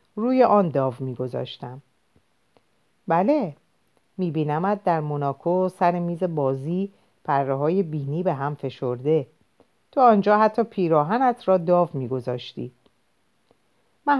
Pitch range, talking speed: 130-215 Hz, 105 wpm